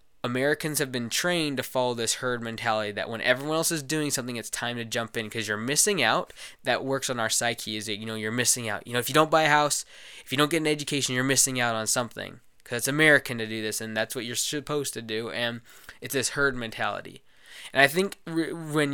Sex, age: male, 20-39